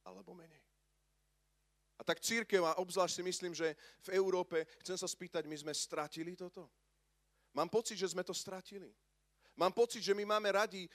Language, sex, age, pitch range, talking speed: Slovak, male, 40-59, 140-190 Hz, 170 wpm